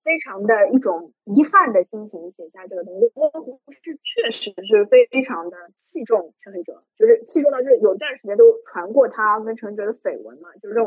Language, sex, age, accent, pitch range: Chinese, female, 20-39, native, 220-360 Hz